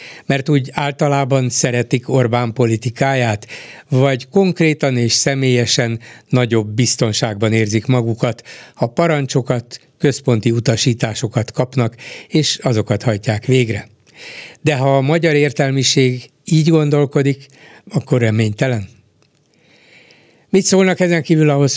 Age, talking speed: 60-79, 100 wpm